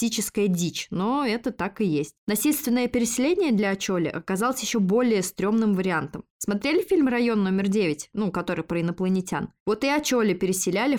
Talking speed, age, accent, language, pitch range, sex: 155 wpm, 20-39, native, Russian, 185-235 Hz, female